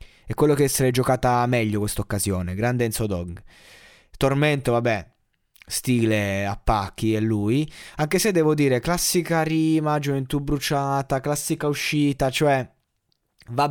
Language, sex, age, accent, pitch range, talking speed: Italian, male, 20-39, native, 110-140 Hz, 130 wpm